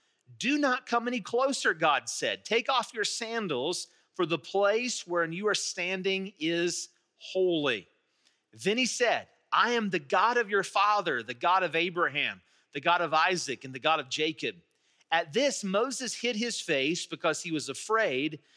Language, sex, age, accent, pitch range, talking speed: English, male, 40-59, American, 155-205 Hz, 170 wpm